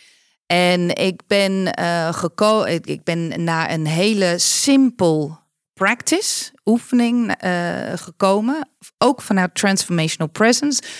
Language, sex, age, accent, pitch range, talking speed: Dutch, female, 40-59, Dutch, 160-210 Hz, 105 wpm